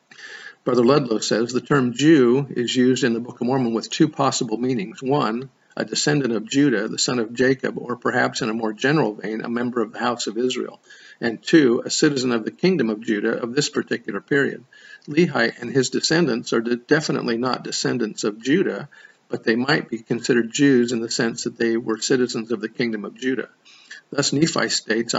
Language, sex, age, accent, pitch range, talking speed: English, male, 50-69, American, 115-135 Hz, 200 wpm